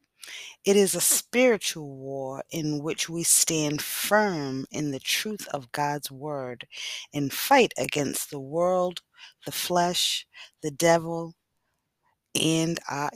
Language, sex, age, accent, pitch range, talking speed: English, female, 30-49, American, 140-175 Hz, 125 wpm